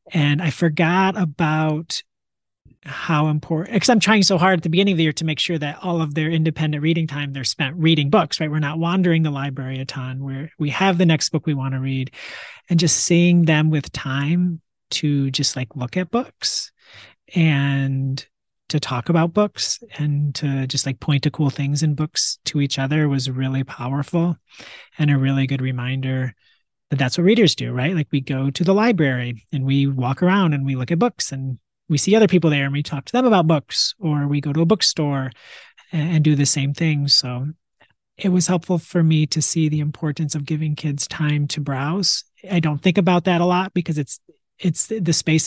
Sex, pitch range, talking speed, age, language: male, 140-170 Hz, 210 wpm, 30-49, English